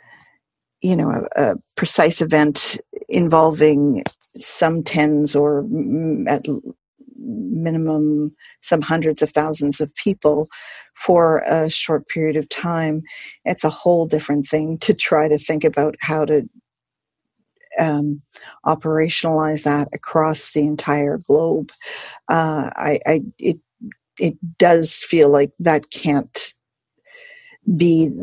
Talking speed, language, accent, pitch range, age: 115 wpm, English, American, 150-175 Hz, 50-69